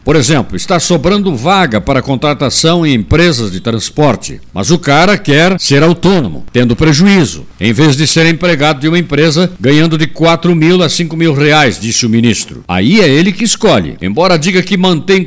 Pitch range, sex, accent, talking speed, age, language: 140-175 Hz, male, Brazilian, 185 wpm, 60-79, Portuguese